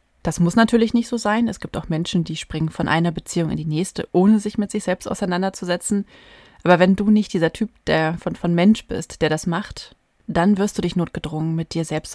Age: 30-49